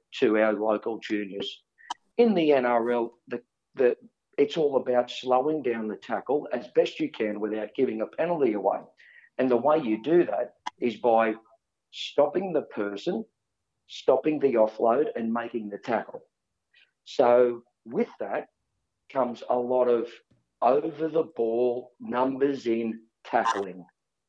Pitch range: 110-145 Hz